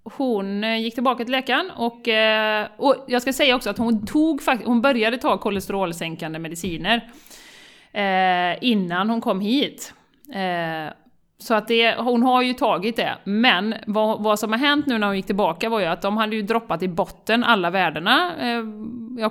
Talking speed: 170 wpm